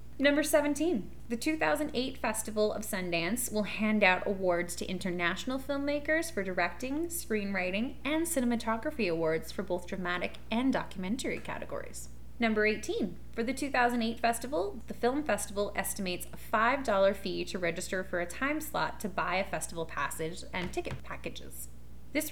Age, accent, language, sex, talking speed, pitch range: 20-39, American, English, female, 145 wpm, 175-245 Hz